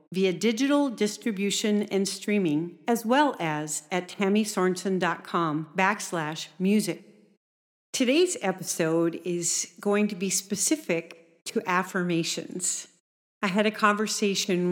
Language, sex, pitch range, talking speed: English, female, 170-205 Hz, 100 wpm